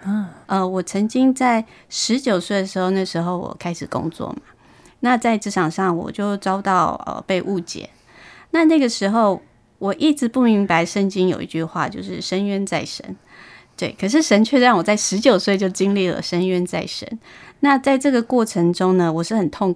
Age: 20-39